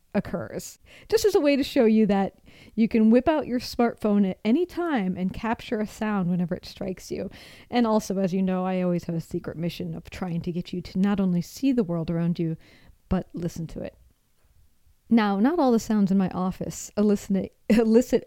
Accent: American